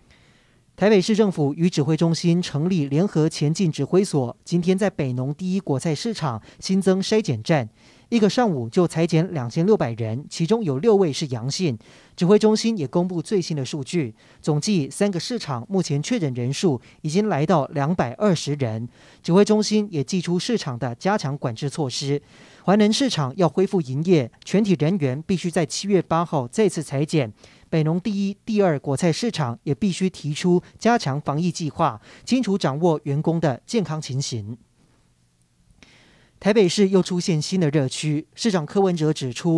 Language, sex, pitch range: Chinese, male, 140-195 Hz